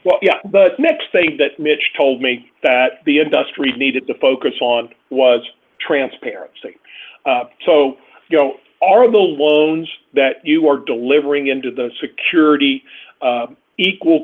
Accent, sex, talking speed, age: American, male, 145 wpm, 50-69